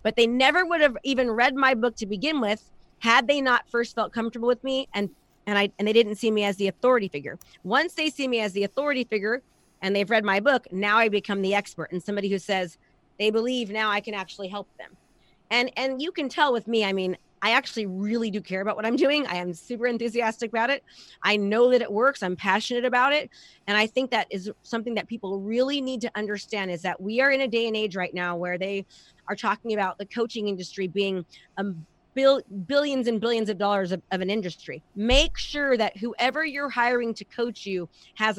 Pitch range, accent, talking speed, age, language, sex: 195-245 Hz, American, 230 wpm, 30-49, English, female